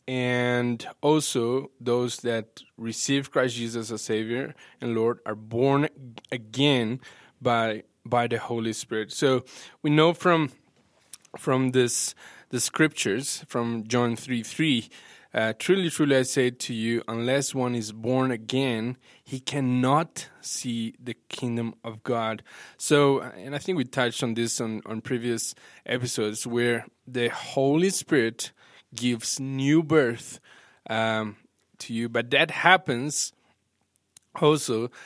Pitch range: 115-135 Hz